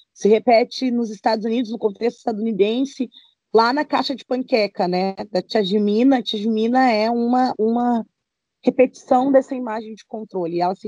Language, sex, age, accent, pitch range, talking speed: Portuguese, female, 20-39, Brazilian, 210-245 Hz, 165 wpm